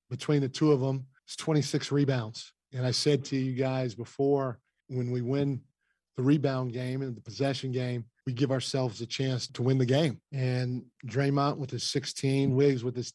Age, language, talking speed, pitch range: 40-59, English, 190 wpm, 125-140 Hz